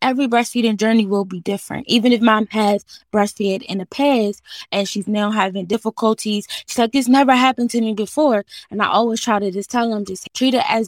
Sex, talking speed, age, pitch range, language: female, 215 wpm, 20-39, 185-215 Hz, English